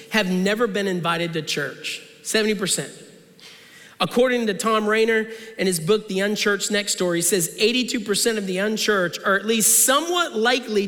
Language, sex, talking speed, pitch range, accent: English, male, 160 wpm, 190-225 Hz, American